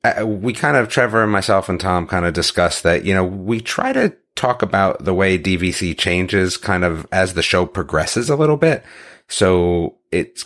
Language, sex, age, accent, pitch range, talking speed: English, male, 30-49, American, 90-110 Hz, 195 wpm